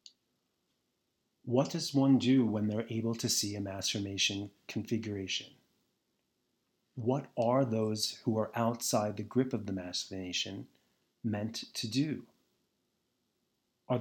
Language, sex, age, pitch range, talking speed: English, male, 30-49, 105-125 Hz, 125 wpm